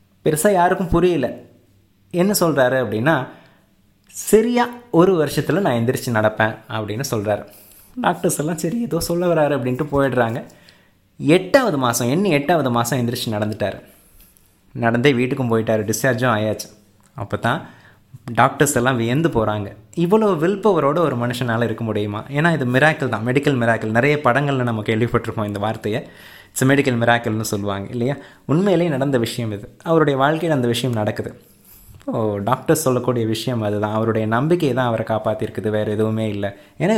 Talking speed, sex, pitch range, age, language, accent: 140 wpm, male, 110-140 Hz, 20-39, Tamil, native